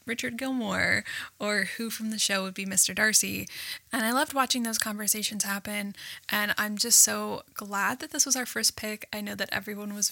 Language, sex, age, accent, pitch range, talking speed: English, female, 10-29, American, 205-250 Hz, 200 wpm